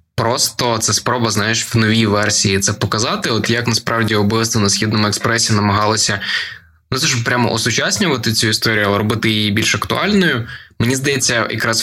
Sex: male